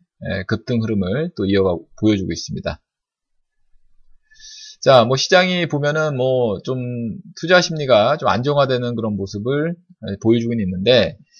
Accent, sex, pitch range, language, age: native, male, 105-155 Hz, Korean, 20-39